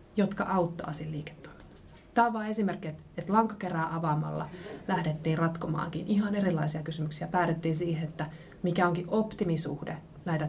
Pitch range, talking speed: 160-185 Hz, 130 wpm